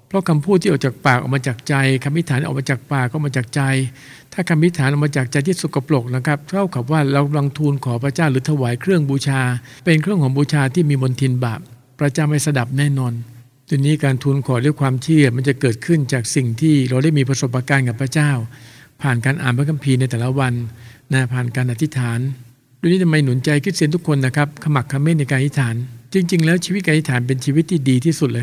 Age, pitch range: 60-79, 130-155 Hz